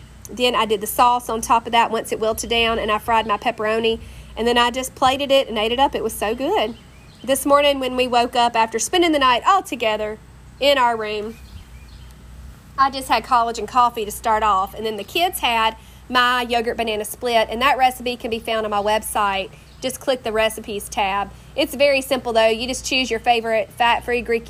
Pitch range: 220-255 Hz